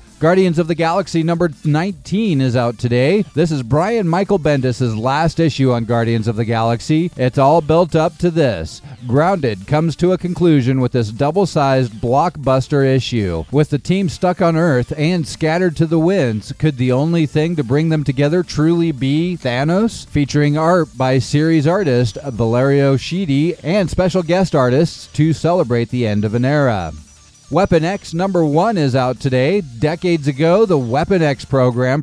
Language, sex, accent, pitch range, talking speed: English, male, American, 125-165 Hz, 170 wpm